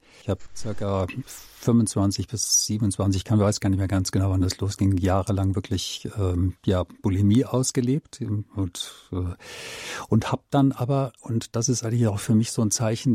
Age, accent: 50-69, German